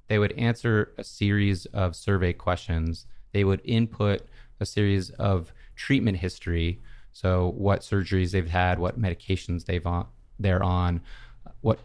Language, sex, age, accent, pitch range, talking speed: English, male, 30-49, American, 90-105 Hz, 140 wpm